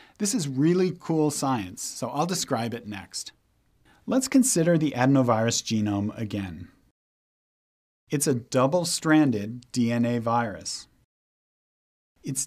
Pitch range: 120-160 Hz